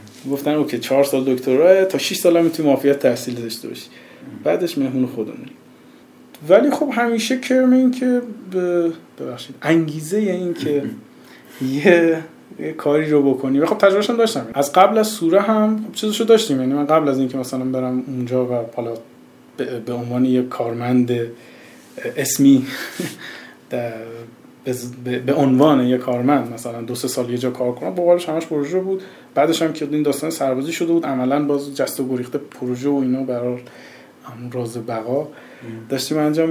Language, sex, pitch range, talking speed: Persian, male, 125-175 Hz, 165 wpm